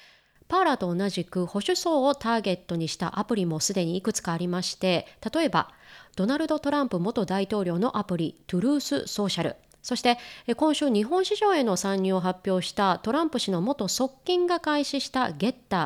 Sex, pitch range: female, 190-275 Hz